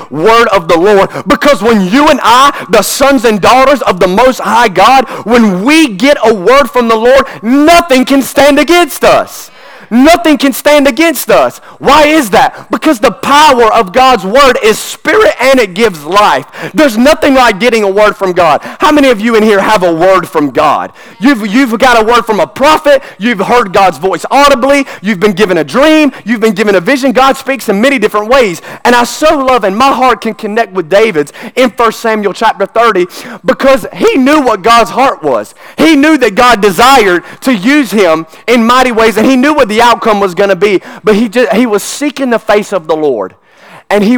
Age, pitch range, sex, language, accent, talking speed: 30-49, 210-275 Hz, male, English, American, 210 wpm